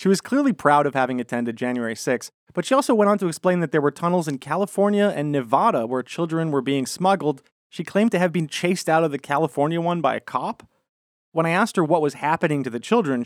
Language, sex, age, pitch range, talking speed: English, male, 30-49, 115-150 Hz, 240 wpm